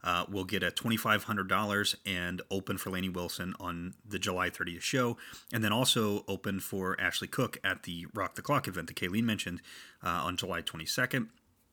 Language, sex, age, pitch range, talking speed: English, male, 30-49, 90-105 Hz, 180 wpm